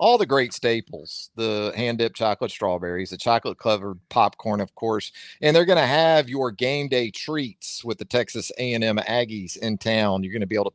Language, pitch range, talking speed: English, 115-160 Hz, 195 wpm